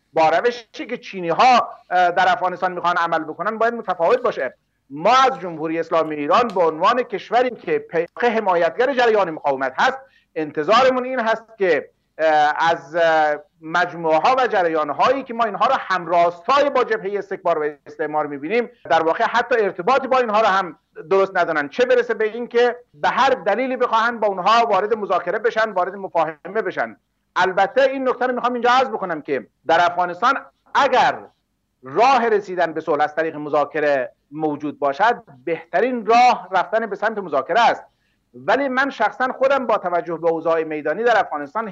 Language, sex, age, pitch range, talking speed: Persian, male, 50-69, 165-245 Hz, 160 wpm